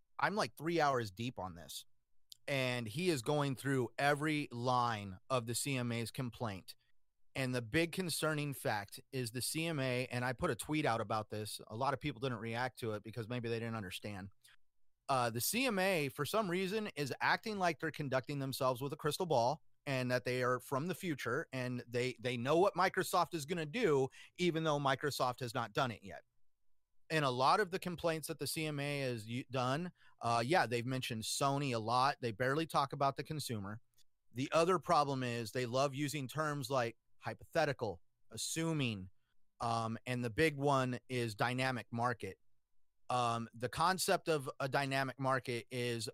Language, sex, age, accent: English, male, 30-49, American